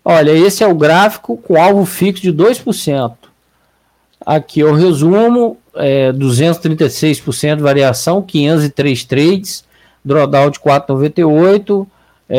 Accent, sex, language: Brazilian, male, Portuguese